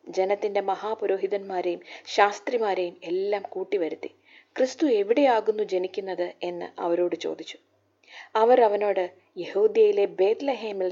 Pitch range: 185-245 Hz